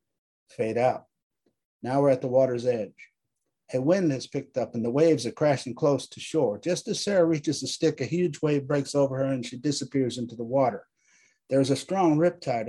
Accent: American